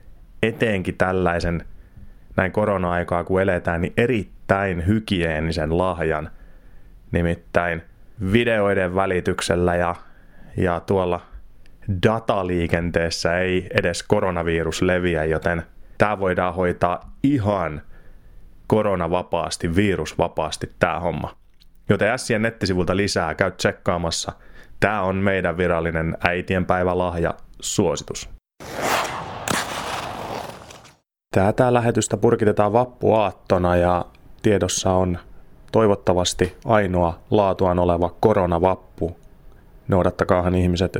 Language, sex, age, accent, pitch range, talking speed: Finnish, male, 30-49, native, 85-100 Hz, 80 wpm